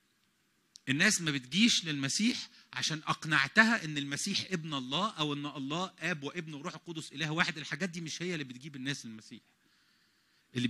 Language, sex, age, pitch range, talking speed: English, male, 40-59, 165-230 Hz, 155 wpm